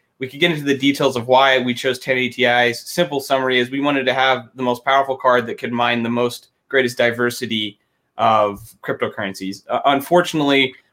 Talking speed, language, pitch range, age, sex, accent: 185 wpm, English, 115-135 Hz, 30-49, male, American